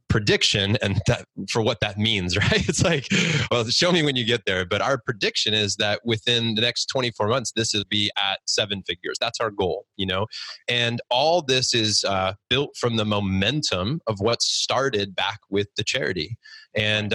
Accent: American